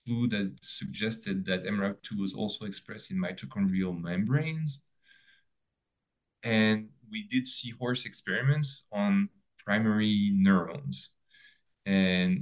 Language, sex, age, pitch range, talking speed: English, male, 20-39, 95-125 Hz, 100 wpm